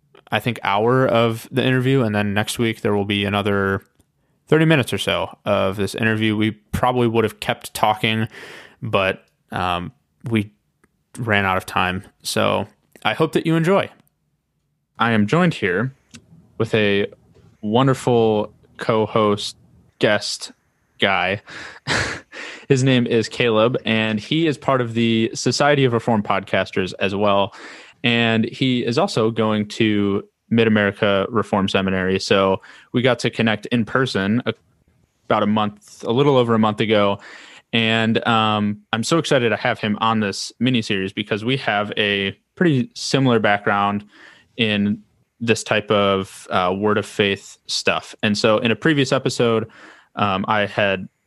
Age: 20-39